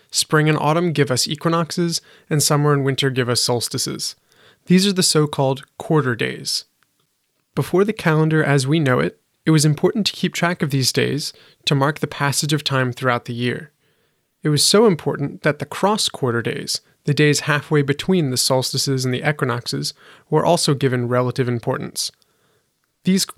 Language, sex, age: English, male, 30-49